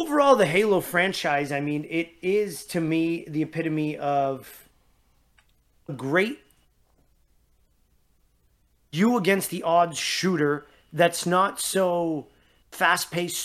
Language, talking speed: English, 105 wpm